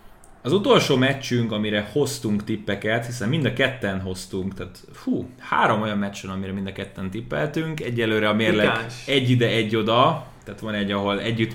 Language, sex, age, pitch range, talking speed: Hungarian, male, 20-39, 100-120 Hz, 170 wpm